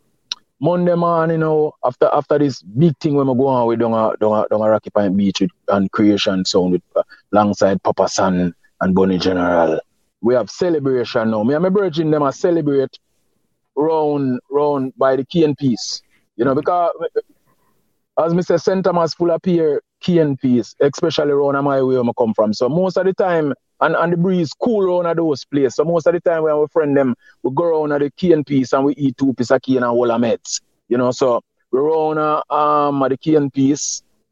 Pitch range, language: 120-165 Hz, English